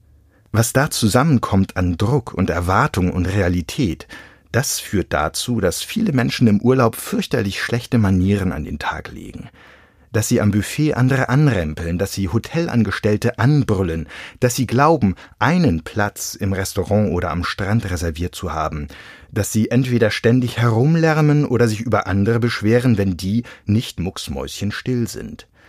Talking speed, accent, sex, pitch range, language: 145 wpm, German, male, 90-120 Hz, German